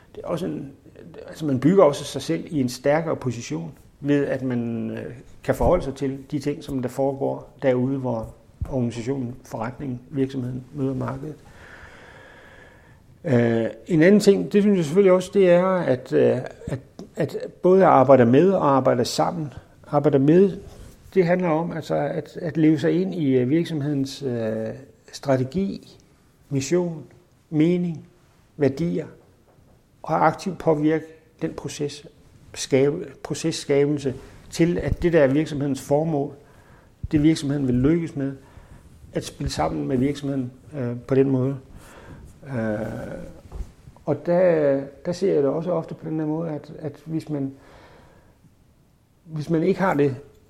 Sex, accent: male, native